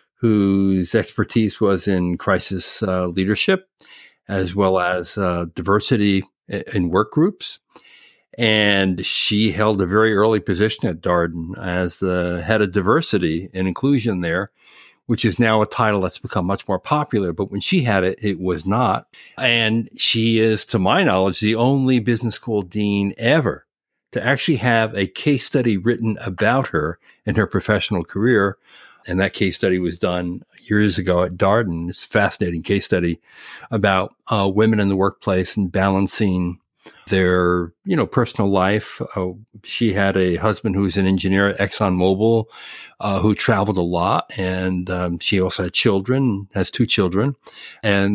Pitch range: 95-110 Hz